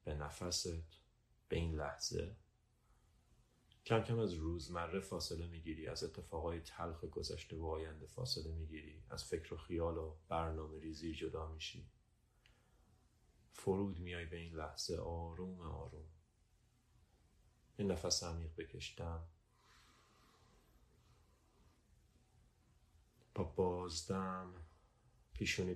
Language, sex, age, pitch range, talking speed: Persian, male, 30-49, 80-110 Hz, 100 wpm